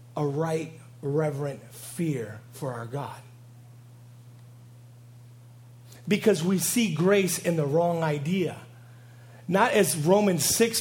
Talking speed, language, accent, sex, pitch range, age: 105 wpm, English, American, male, 120-170 Hz, 40-59